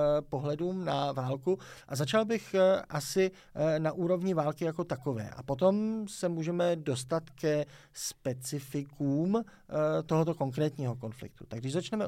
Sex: male